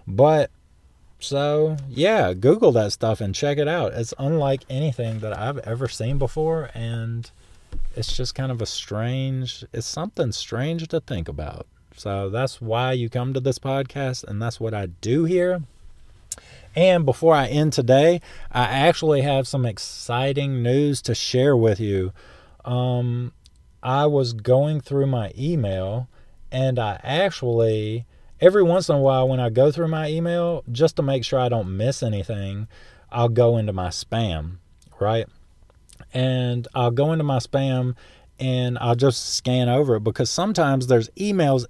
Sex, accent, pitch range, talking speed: male, American, 110-135 Hz, 160 wpm